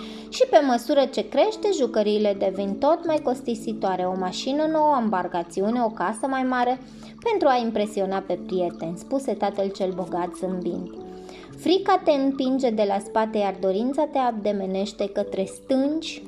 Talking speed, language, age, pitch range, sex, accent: 150 wpm, Romanian, 20-39, 195-255 Hz, female, native